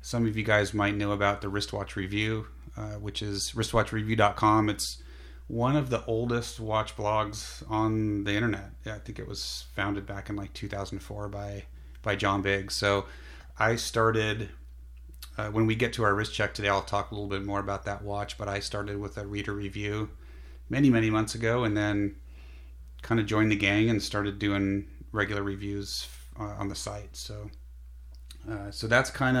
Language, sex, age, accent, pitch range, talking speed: English, male, 30-49, American, 95-110 Hz, 185 wpm